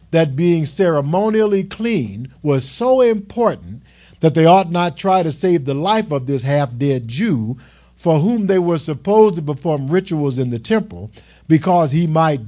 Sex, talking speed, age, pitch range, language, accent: male, 170 wpm, 50-69, 120-180 Hz, English, American